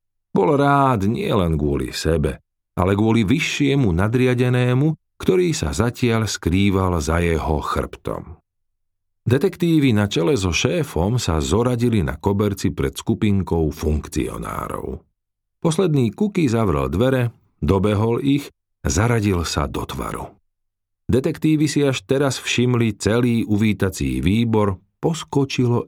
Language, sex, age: Slovak, male, 50-69